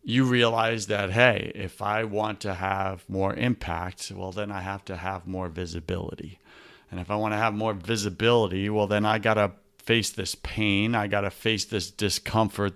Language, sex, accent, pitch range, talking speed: English, male, American, 95-115 Hz, 195 wpm